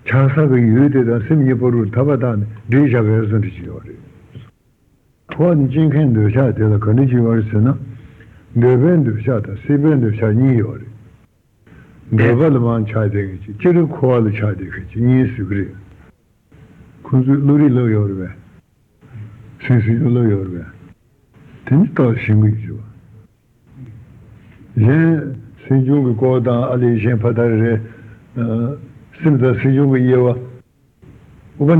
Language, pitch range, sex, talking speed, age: Italian, 110-130 Hz, male, 115 wpm, 60-79